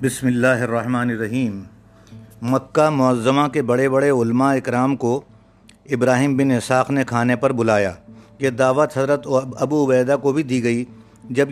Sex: male